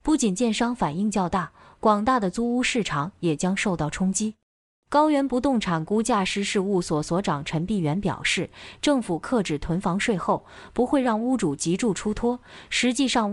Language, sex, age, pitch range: Chinese, female, 20-39, 175-230 Hz